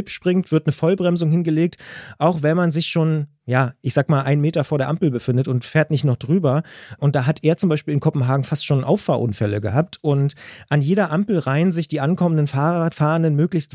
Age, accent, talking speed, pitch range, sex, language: 30-49, German, 205 wpm, 140-170 Hz, male, German